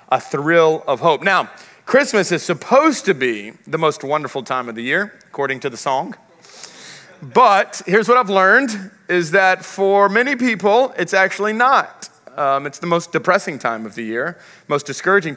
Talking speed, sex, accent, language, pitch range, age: 175 wpm, male, American, English, 135-175 Hz, 40-59